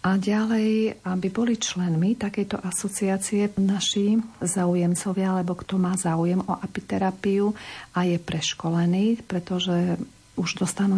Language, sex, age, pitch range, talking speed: Slovak, female, 50-69, 180-195 Hz, 115 wpm